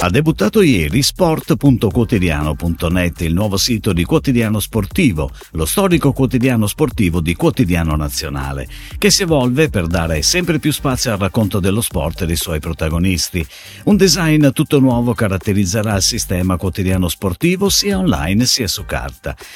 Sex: male